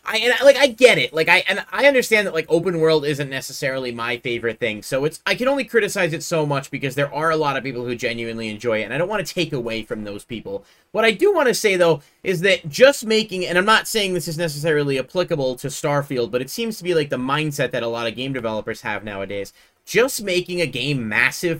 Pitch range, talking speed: 135-190 Hz, 255 wpm